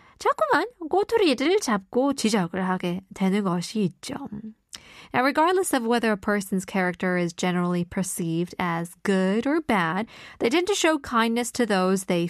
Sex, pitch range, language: female, 190-275 Hz, Korean